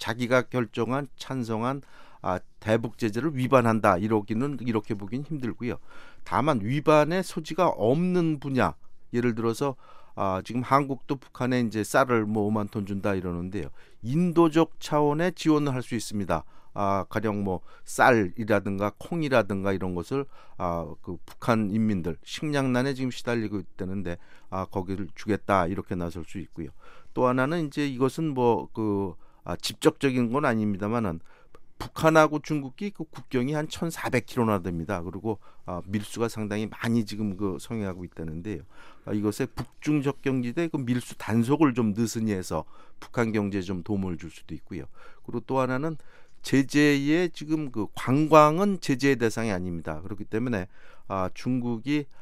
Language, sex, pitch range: Korean, male, 100-135 Hz